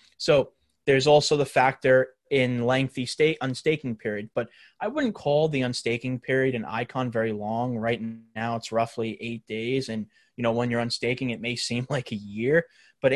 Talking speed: 180 wpm